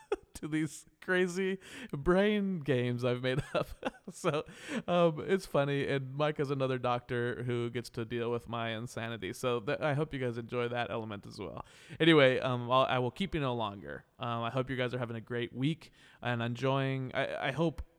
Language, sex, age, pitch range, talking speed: English, male, 20-39, 120-155 Hz, 195 wpm